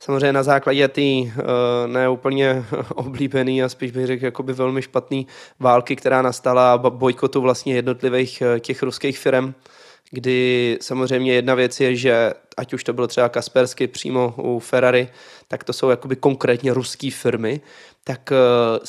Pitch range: 125-135 Hz